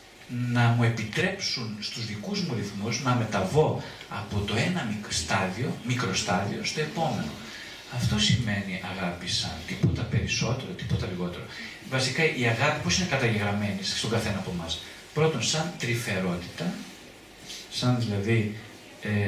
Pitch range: 105-135 Hz